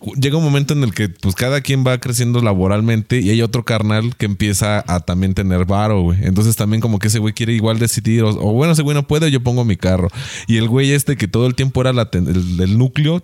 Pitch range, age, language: 100-125 Hz, 20-39, Spanish